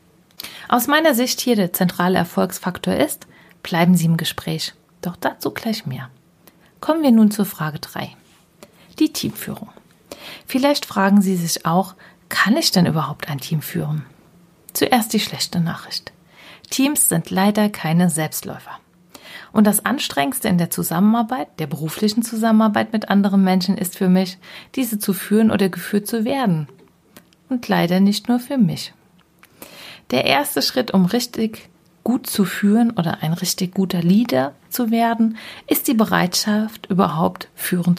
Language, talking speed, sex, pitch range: German, 145 wpm, female, 170-220 Hz